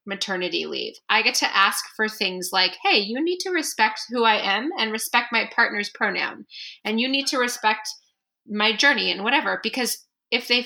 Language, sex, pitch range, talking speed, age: English, female, 205-280 Hz, 190 wpm, 20-39